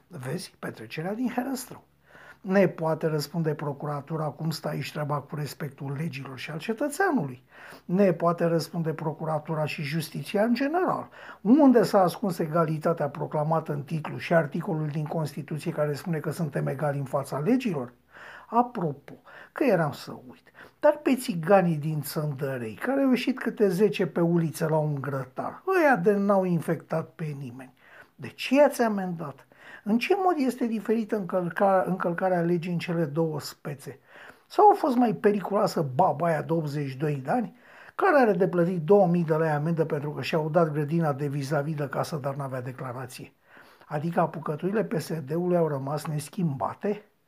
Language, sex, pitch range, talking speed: Romanian, male, 150-200 Hz, 160 wpm